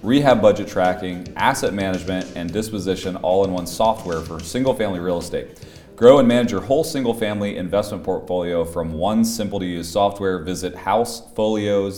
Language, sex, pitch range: English, male, 85-105 Hz